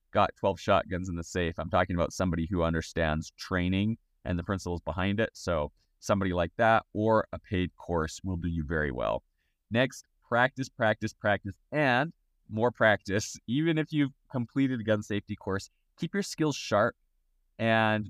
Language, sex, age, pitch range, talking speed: English, male, 20-39, 85-105 Hz, 170 wpm